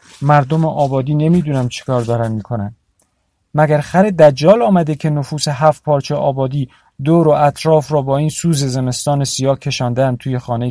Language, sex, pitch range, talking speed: Persian, male, 115-145 Hz, 165 wpm